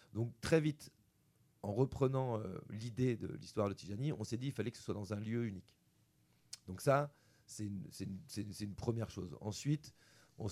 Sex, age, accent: male, 40-59, French